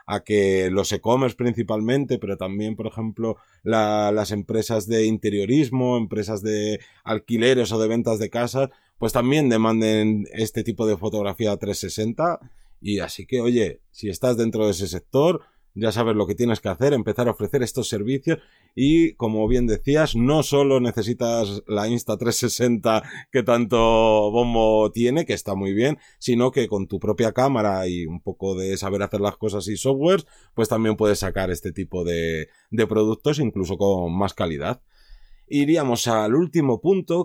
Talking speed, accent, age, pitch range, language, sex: 165 wpm, Spanish, 30-49, 105-130 Hz, Spanish, male